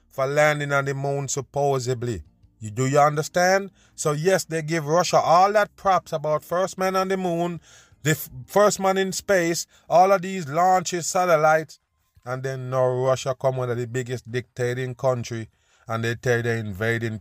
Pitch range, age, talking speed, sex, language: 110-130 Hz, 30-49, 175 wpm, male, English